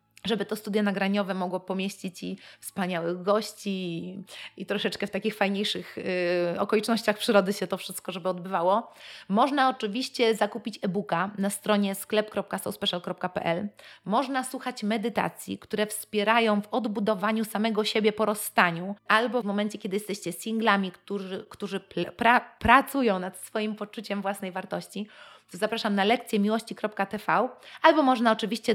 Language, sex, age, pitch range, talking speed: Polish, female, 30-49, 185-220 Hz, 125 wpm